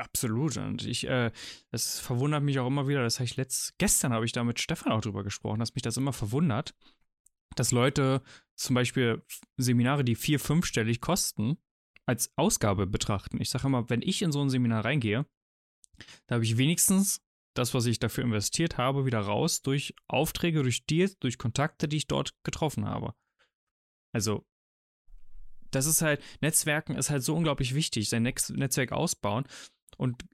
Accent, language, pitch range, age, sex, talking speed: German, German, 120-155 Hz, 20-39, male, 170 wpm